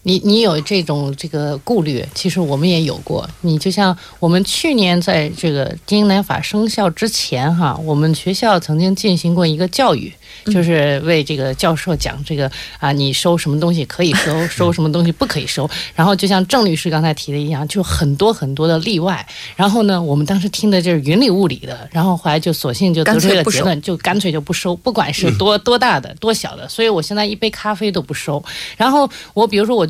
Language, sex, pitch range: Korean, female, 160-210 Hz